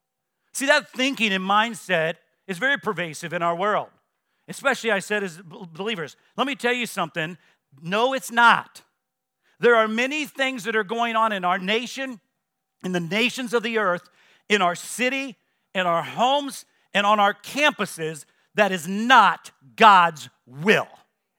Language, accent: English, American